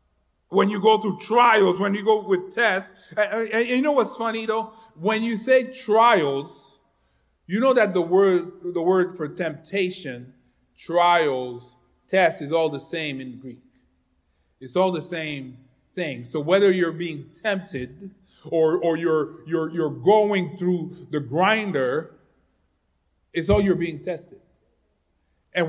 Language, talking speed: English, 140 wpm